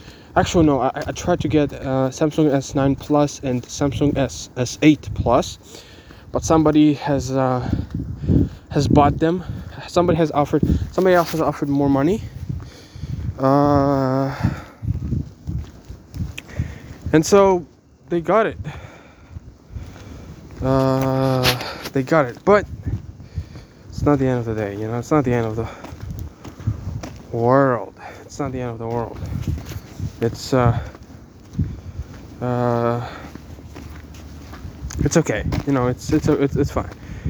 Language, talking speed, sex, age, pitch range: English, 125 wpm, male, 20-39, 115-150 Hz